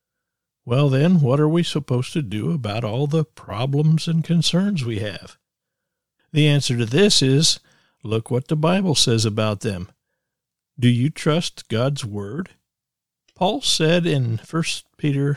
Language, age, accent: English, 50-69, American